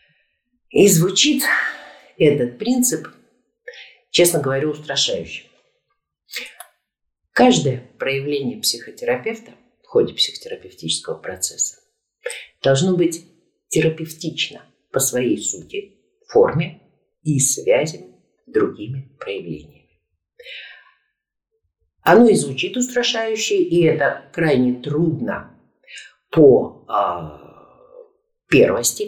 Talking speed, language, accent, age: 75 wpm, Russian, native, 50-69